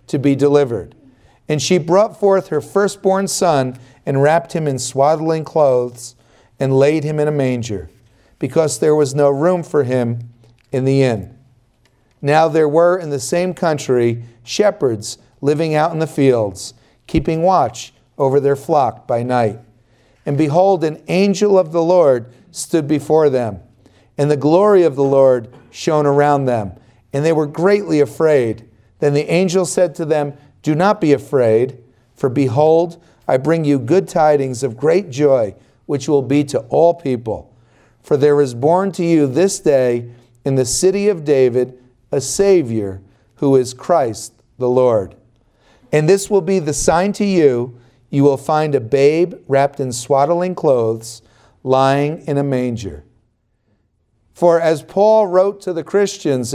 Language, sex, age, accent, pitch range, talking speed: English, male, 50-69, American, 125-165 Hz, 160 wpm